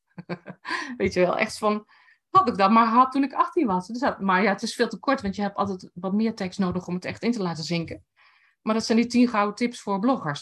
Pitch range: 170-230 Hz